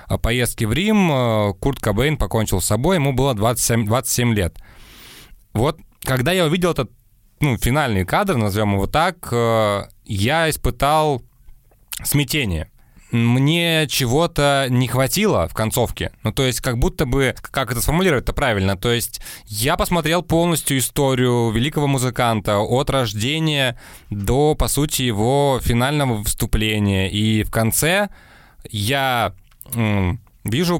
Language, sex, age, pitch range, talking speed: Russian, male, 20-39, 105-140 Hz, 125 wpm